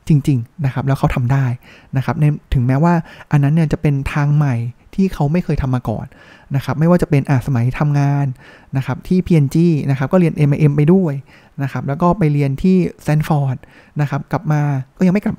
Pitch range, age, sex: 135-170 Hz, 20-39, male